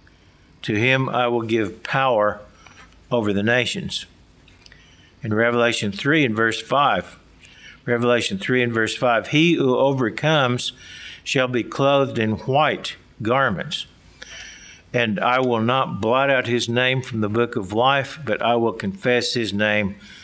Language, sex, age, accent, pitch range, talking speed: English, male, 60-79, American, 110-135 Hz, 140 wpm